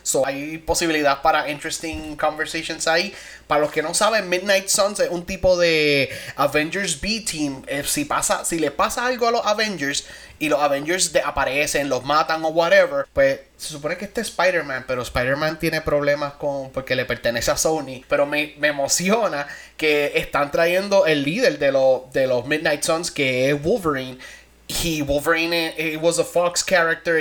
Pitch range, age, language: 145-185 Hz, 20-39, English